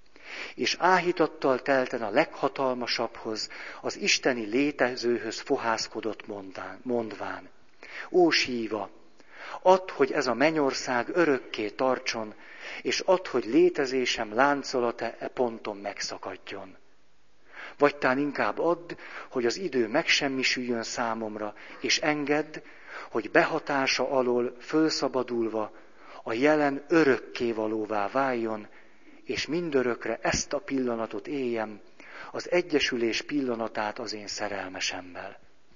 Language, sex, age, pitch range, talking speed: Hungarian, male, 50-69, 115-150 Hz, 95 wpm